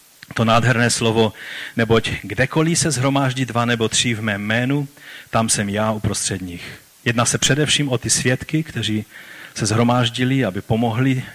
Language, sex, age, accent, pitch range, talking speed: Czech, male, 40-59, native, 115-140 Hz, 155 wpm